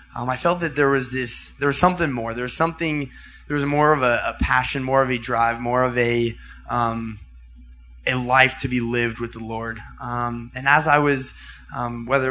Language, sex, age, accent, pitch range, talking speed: English, male, 20-39, American, 120-135 Hz, 215 wpm